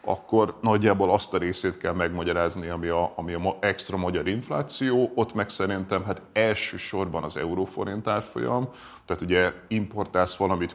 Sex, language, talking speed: male, Hungarian, 140 wpm